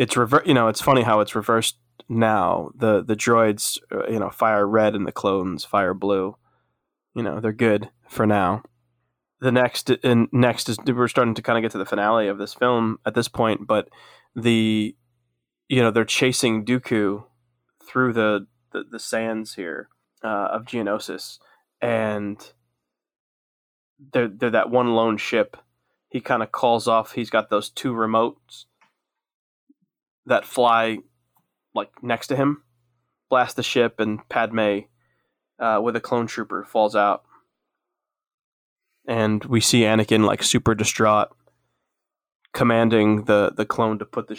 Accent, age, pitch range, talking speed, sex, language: American, 20-39, 105-120 Hz, 155 wpm, male, English